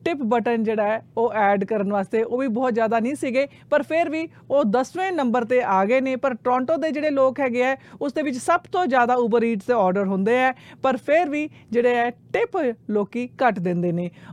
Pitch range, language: 230-280 Hz, Punjabi